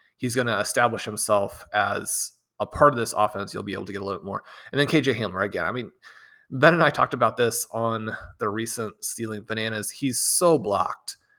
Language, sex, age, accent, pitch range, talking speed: English, male, 30-49, American, 110-140 Hz, 215 wpm